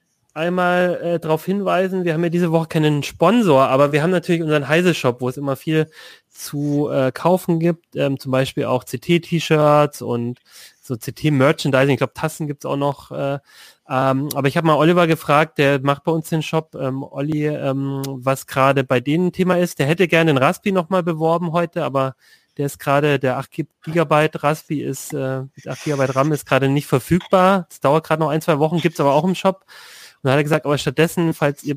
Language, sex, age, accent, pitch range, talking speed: German, male, 30-49, German, 135-165 Hz, 205 wpm